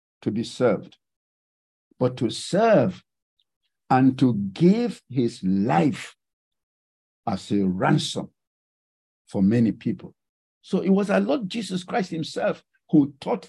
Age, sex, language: 60-79, male, English